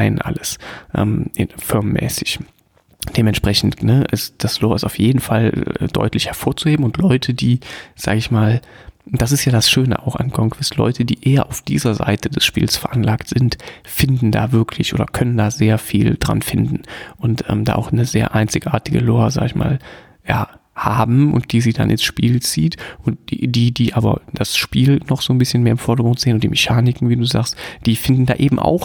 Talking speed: 200 wpm